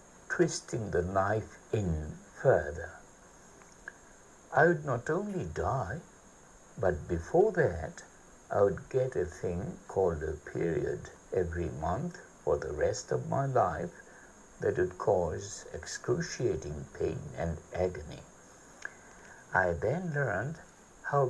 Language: English